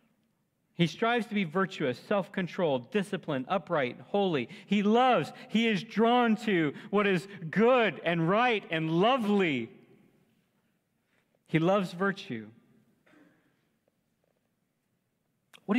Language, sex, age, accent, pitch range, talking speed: English, male, 40-59, American, 155-210 Hz, 100 wpm